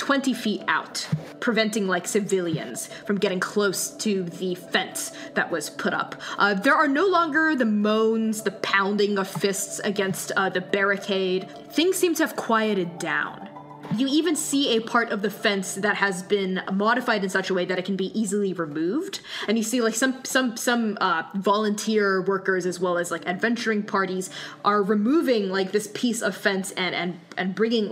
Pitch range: 180-220 Hz